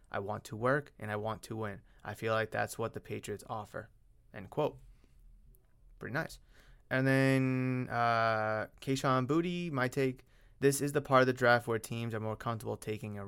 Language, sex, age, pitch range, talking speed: English, male, 20-39, 105-130 Hz, 190 wpm